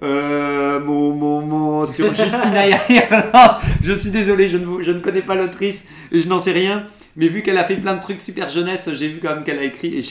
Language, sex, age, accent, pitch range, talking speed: French, male, 40-59, French, 135-175 Hz, 230 wpm